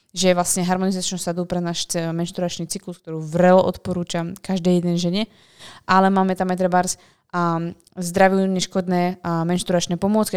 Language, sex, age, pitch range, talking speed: Slovak, female, 20-39, 175-190 Hz, 145 wpm